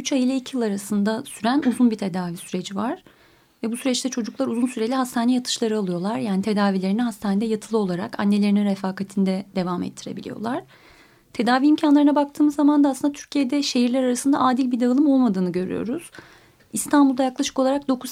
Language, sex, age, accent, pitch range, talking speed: Turkish, female, 30-49, native, 215-260 Hz, 160 wpm